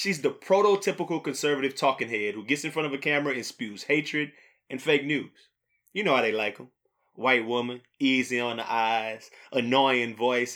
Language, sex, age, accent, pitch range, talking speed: English, male, 20-39, American, 130-180 Hz, 190 wpm